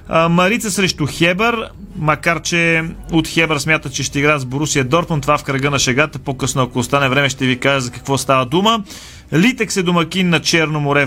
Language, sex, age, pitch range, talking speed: Bulgarian, male, 30-49, 150-190 Hz, 195 wpm